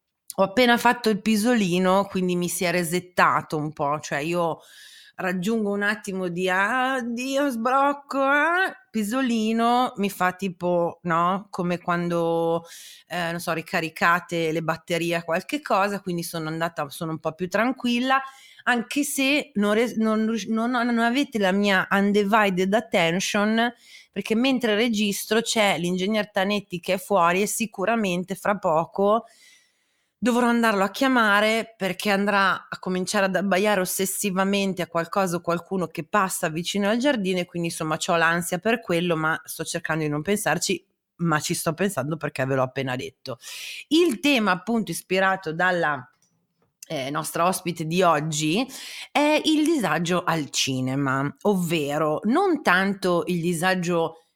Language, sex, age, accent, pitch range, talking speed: Italian, female, 30-49, native, 170-225 Hz, 145 wpm